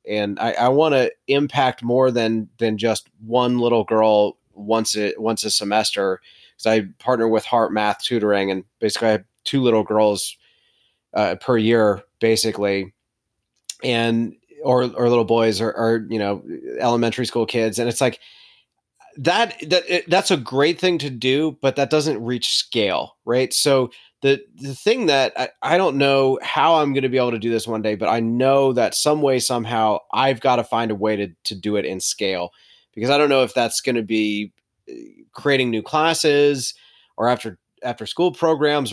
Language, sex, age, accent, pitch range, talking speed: English, male, 30-49, American, 110-135 Hz, 185 wpm